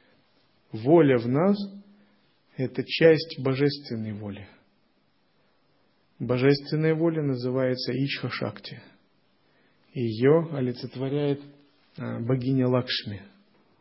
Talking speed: 65 wpm